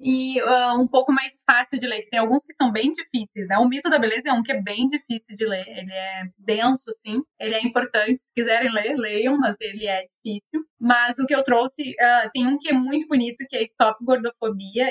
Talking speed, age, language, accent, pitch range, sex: 225 wpm, 10-29, Portuguese, Brazilian, 210-255 Hz, female